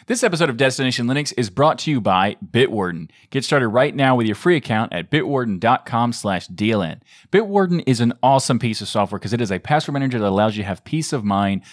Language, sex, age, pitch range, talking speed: English, male, 30-49, 105-135 Hz, 225 wpm